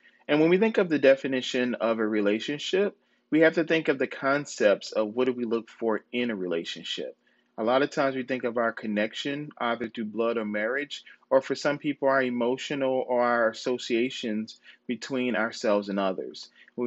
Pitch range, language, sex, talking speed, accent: 115-145 Hz, English, male, 190 wpm, American